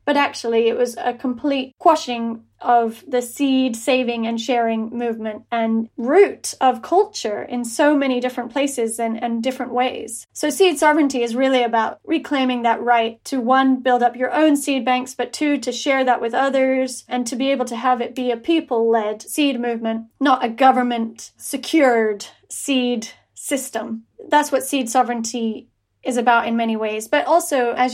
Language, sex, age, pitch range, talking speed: English, female, 30-49, 240-290 Hz, 175 wpm